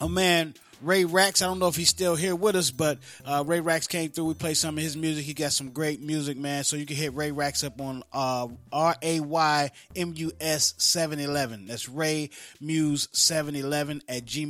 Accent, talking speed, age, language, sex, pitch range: American, 180 wpm, 30-49, English, male, 135-175 Hz